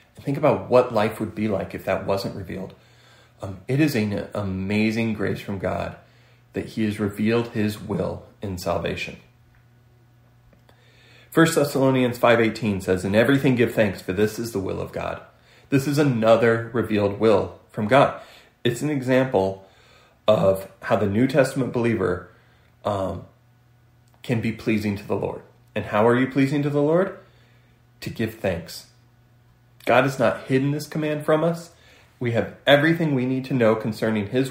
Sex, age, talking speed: male, 30-49, 160 wpm